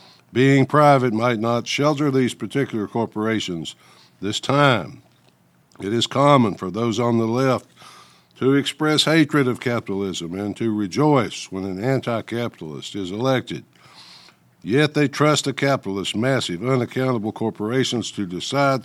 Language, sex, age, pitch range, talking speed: English, male, 60-79, 110-135 Hz, 130 wpm